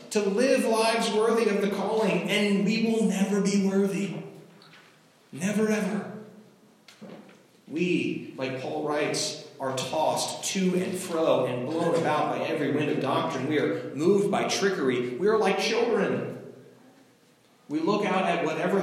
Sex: male